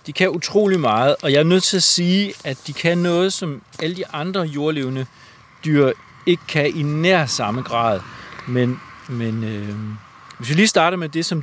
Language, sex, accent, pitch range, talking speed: Danish, male, native, 110-150 Hz, 195 wpm